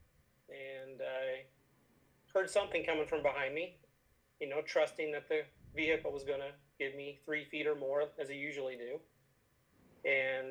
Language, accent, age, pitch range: English, American, 40-59, 135-185 Hz